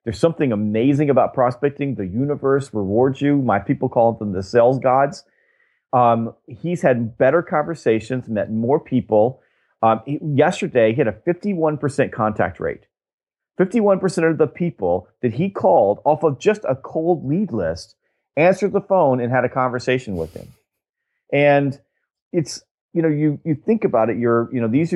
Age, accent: 30-49, American